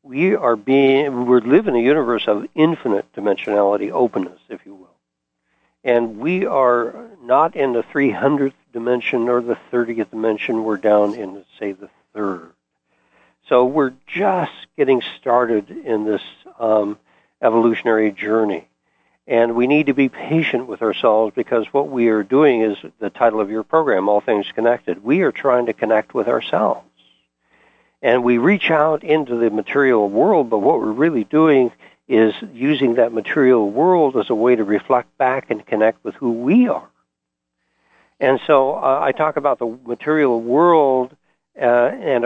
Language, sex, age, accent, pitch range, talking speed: English, male, 60-79, American, 105-130 Hz, 160 wpm